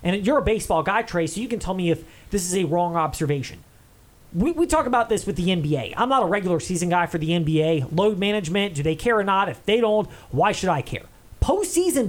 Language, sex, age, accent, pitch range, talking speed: English, male, 30-49, American, 165-240 Hz, 245 wpm